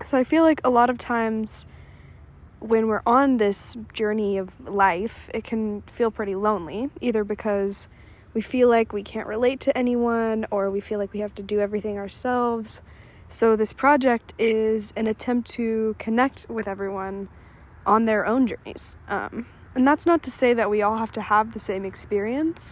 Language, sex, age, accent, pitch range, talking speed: English, female, 10-29, American, 210-250 Hz, 180 wpm